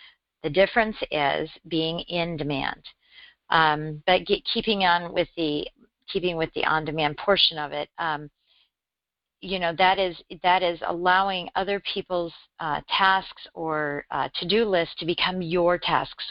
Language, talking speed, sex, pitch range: English, 145 wpm, female, 155-180 Hz